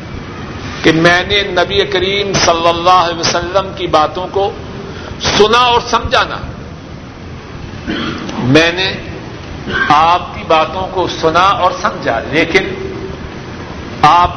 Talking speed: 110 wpm